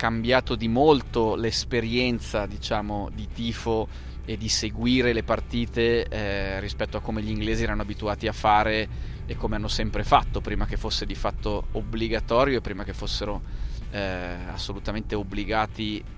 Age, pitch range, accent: 20-39, 100-115 Hz, native